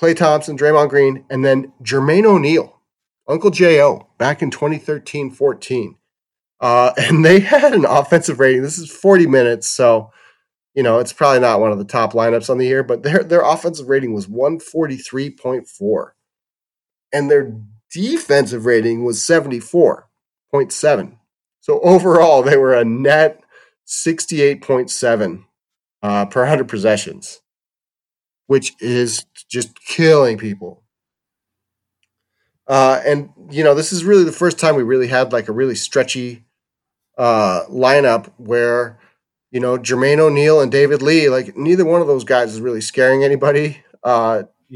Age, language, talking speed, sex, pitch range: 30-49, English, 140 wpm, male, 120-155 Hz